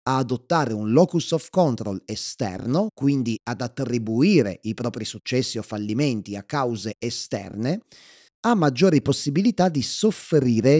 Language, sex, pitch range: Italian, male, 110-140 Hz